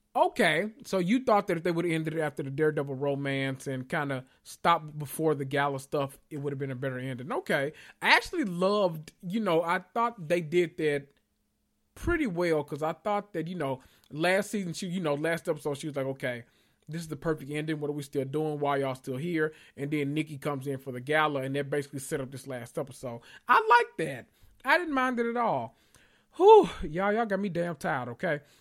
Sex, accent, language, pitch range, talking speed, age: male, American, English, 140-180 Hz, 225 wpm, 30-49